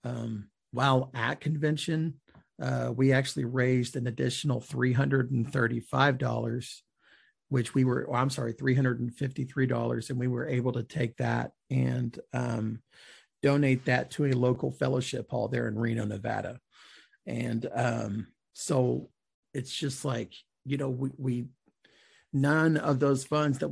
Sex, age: male, 40-59